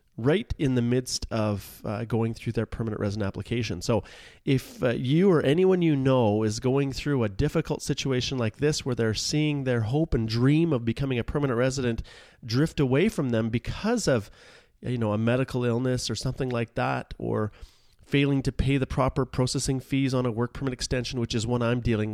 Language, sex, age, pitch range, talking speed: English, male, 30-49, 110-135 Hz, 200 wpm